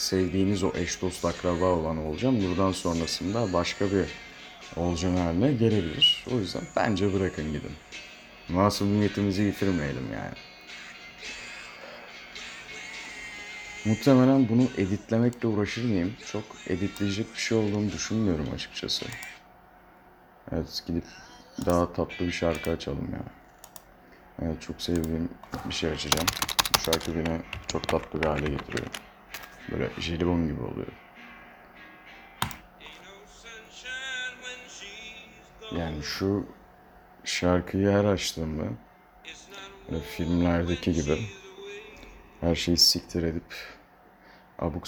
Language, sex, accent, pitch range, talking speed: Turkish, male, native, 85-105 Hz, 100 wpm